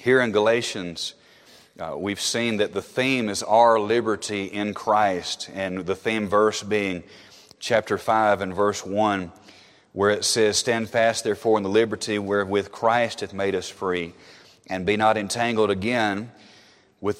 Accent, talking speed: American, 155 wpm